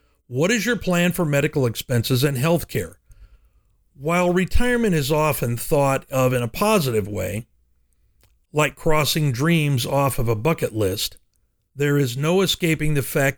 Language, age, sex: English, 50-69, male